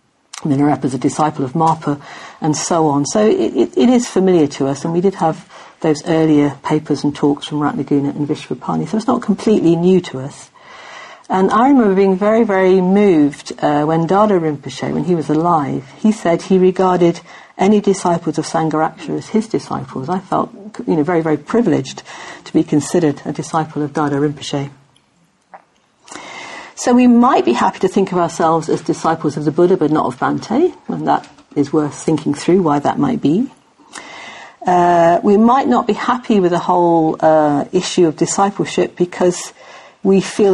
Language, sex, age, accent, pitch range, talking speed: English, female, 50-69, British, 150-195 Hz, 180 wpm